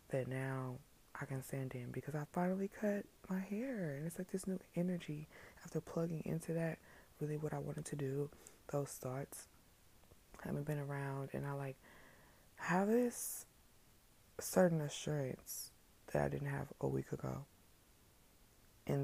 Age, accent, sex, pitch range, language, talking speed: 20-39, American, female, 130-160 Hz, English, 150 wpm